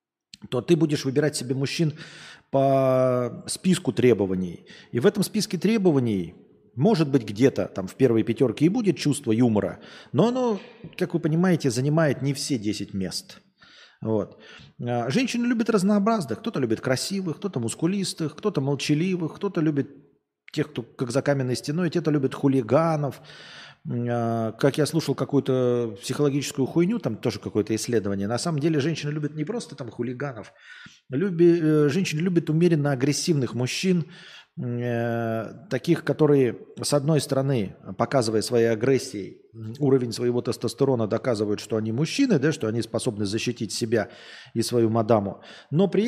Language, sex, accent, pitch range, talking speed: Russian, male, native, 115-165 Hz, 140 wpm